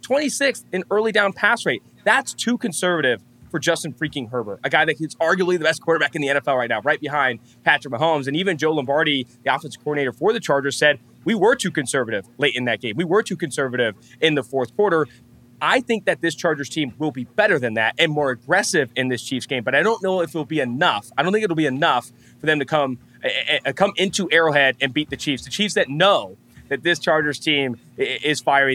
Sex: male